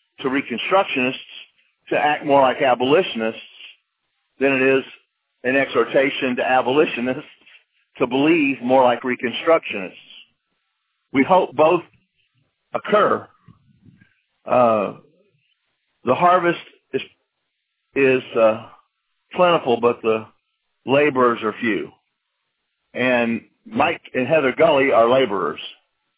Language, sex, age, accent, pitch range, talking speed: English, male, 50-69, American, 120-150 Hz, 95 wpm